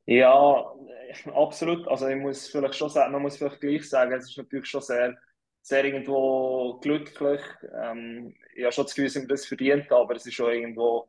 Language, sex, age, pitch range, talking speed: German, male, 20-39, 120-130 Hz, 195 wpm